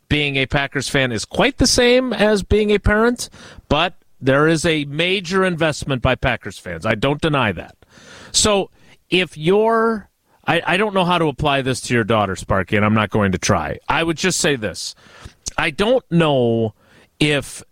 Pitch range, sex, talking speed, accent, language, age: 130-185 Hz, male, 185 wpm, American, English, 40-59